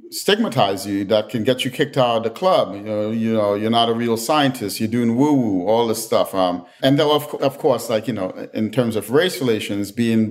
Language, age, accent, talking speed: English, 40-59, American, 245 wpm